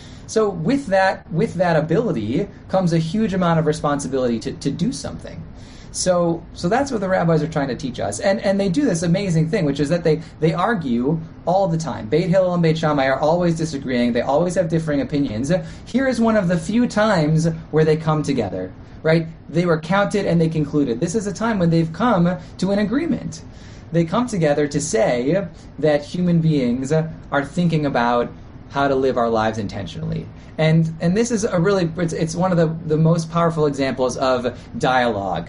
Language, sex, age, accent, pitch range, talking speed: English, male, 30-49, American, 140-185 Hz, 200 wpm